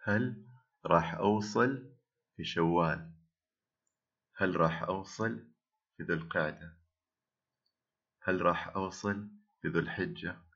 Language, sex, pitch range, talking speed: Arabic, male, 85-120 Hz, 95 wpm